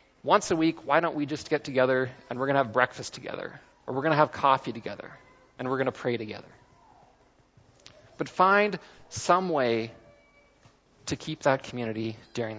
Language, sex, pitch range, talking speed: English, male, 120-150 Hz, 165 wpm